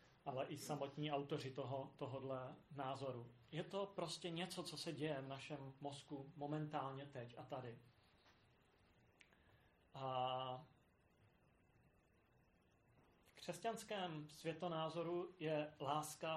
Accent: native